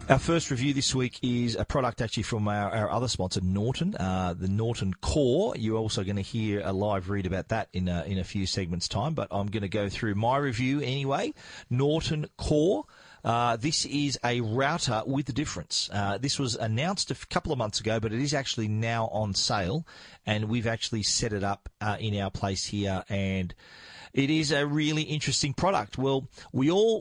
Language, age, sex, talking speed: English, 40-59, male, 205 wpm